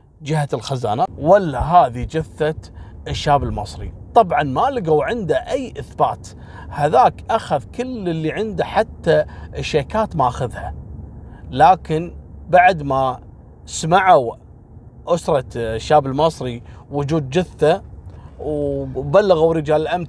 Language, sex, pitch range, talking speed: Arabic, male, 90-150 Hz, 100 wpm